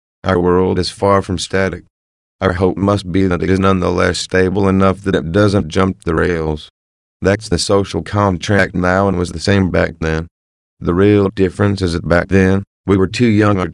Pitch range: 85-100 Hz